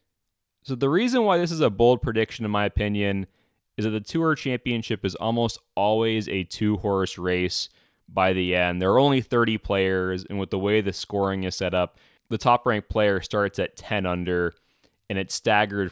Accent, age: American, 20-39